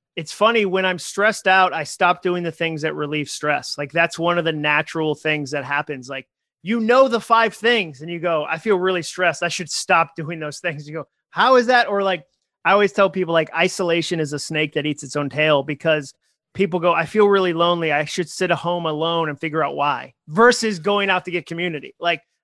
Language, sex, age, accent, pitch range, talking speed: English, male, 30-49, American, 155-190 Hz, 235 wpm